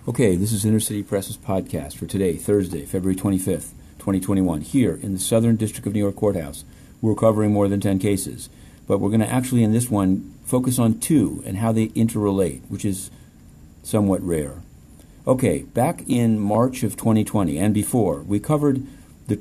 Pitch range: 95-115 Hz